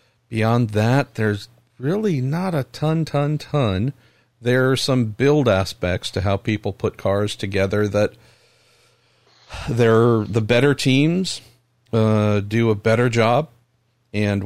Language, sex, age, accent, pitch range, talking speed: English, male, 50-69, American, 100-115 Hz, 130 wpm